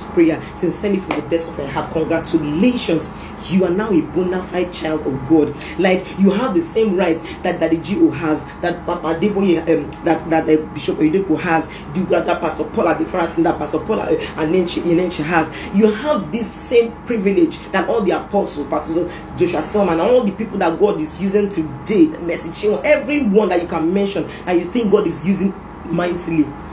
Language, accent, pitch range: English, Nigerian, 160-195 Hz